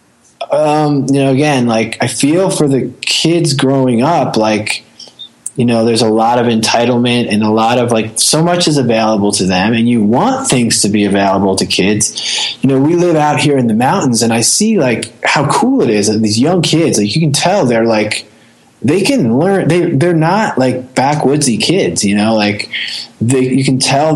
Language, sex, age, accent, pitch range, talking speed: English, male, 20-39, American, 105-135 Hz, 205 wpm